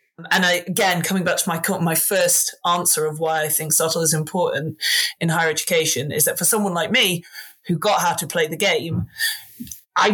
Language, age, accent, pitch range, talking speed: English, 30-49, British, 175-235 Hz, 200 wpm